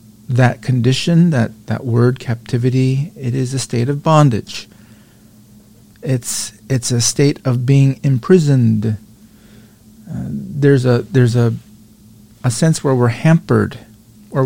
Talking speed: 125 wpm